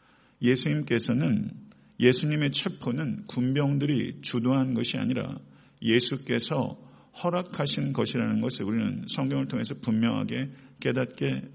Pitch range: 120-140 Hz